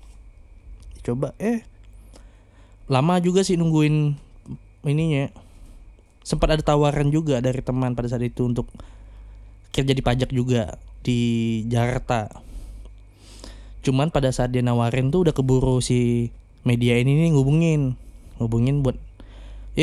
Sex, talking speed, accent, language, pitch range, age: male, 115 wpm, native, Indonesian, 100-135 Hz, 20-39